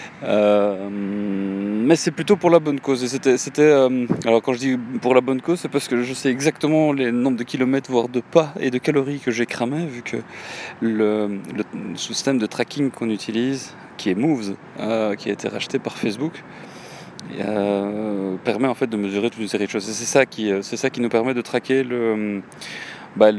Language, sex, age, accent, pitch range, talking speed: French, male, 30-49, French, 105-135 Hz, 215 wpm